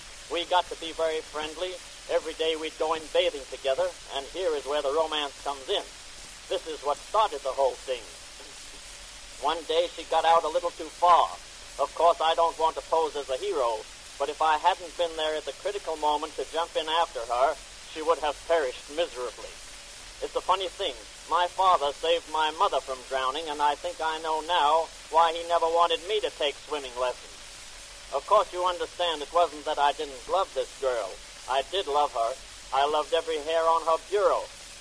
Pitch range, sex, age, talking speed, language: 150-175 Hz, male, 50-69, 200 wpm, English